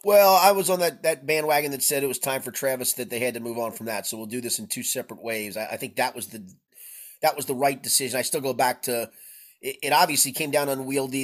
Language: English